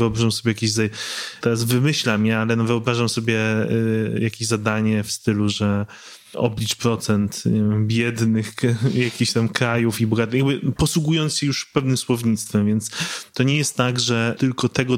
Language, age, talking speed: Polish, 20-39, 150 wpm